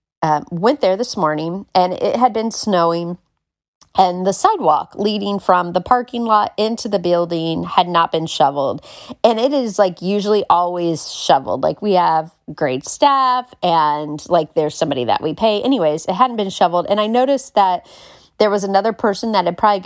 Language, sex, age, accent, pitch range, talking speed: English, female, 30-49, American, 175-255 Hz, 180 wpm